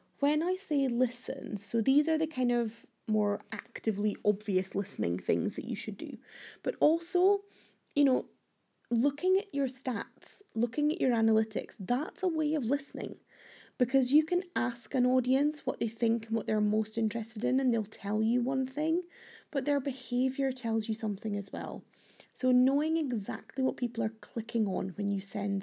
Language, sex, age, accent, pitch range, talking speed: English, female, 30-49, British, 215-285 Hz, 180 wpm